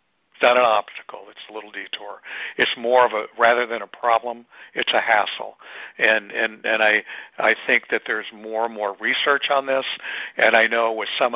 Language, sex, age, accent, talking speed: English, male, 60-79, American, 200 wpm